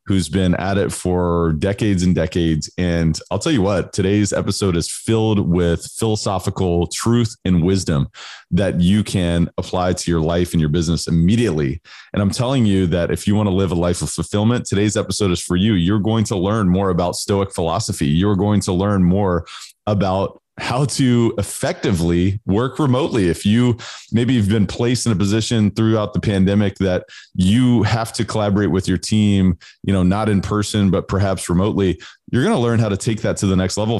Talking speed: 195 wpm